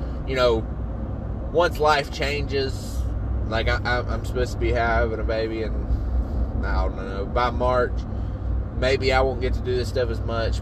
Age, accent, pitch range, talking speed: 20-39, American, 95-120 Hz, 165 wpm